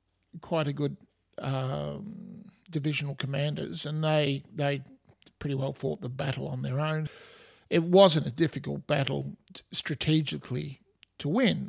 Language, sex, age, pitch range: English, male, 50-69, 120-150 Hz